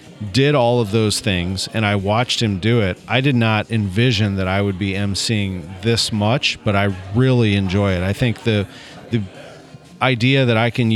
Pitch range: 100-120 Hz